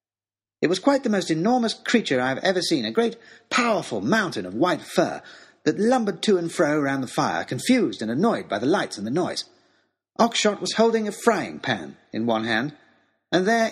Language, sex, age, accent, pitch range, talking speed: English, male, 40-59, British, 140-205 Hz, 200 wpm